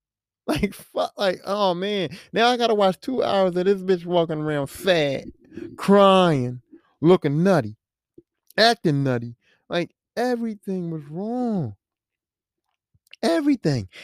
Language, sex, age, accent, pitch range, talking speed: English, male, 30-49, American, 165-235 Hz, 120 wpm